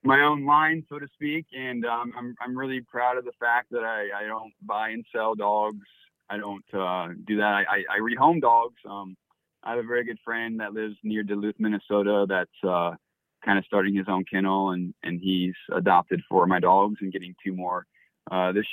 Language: English